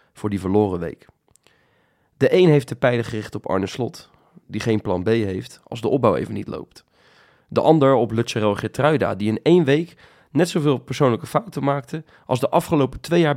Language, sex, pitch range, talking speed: Dutch, male, 105-135 Hz, 195 wpm